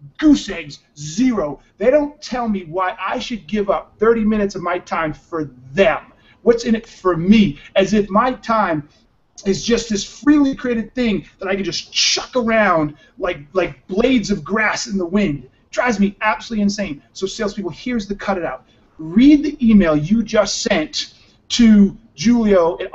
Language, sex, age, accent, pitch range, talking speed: English, male, 40-59, American, 185-230 Hz, 180 wpm